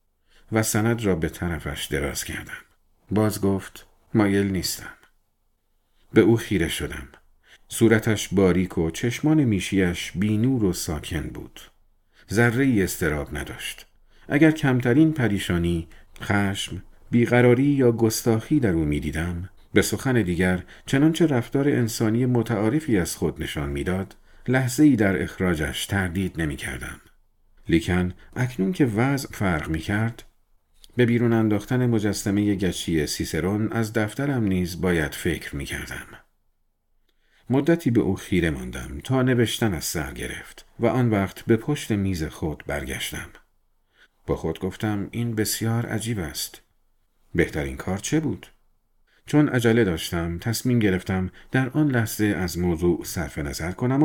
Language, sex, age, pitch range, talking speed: Persian, male, 50-69, 85-120 Hz, 130 wpm